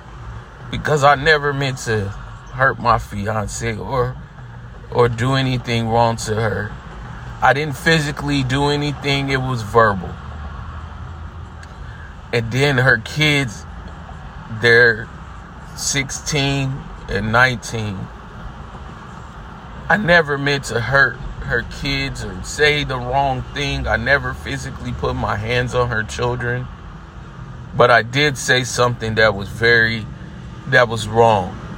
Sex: male